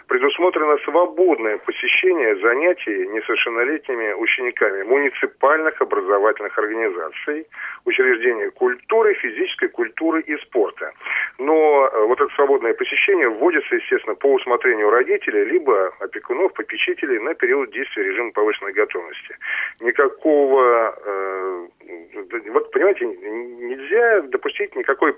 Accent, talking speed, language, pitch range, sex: native, 100 wpm, Russian, 365-425 Hz, male